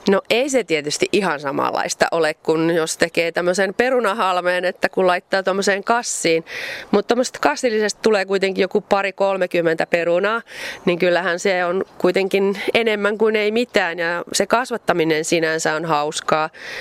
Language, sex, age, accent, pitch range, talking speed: Finnish, female, 30-49, native, 165-205 Hz, 145 wpm